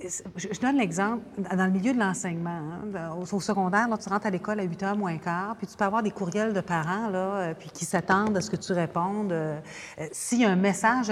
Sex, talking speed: female, 250 wpm